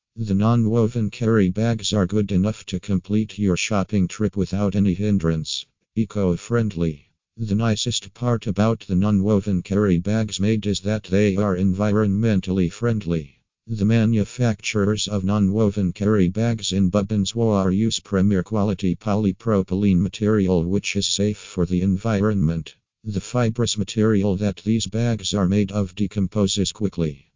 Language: English